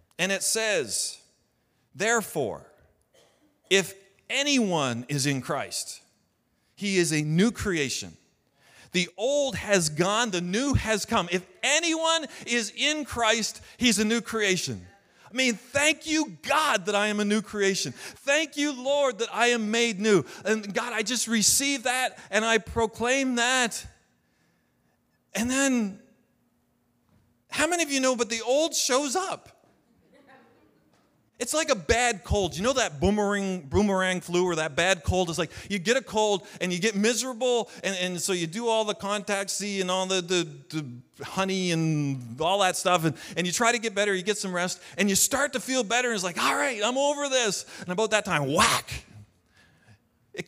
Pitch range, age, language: 175-240 Hz, 40-59, English